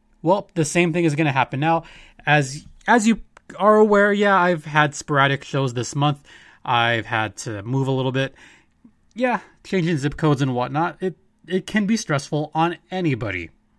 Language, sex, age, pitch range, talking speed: English, male, 20-39, 125-160 Hz, 175 wpm